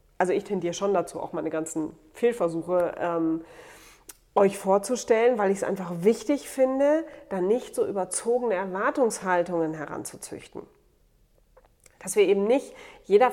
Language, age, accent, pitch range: German, 30-49, German, 180-225 Hz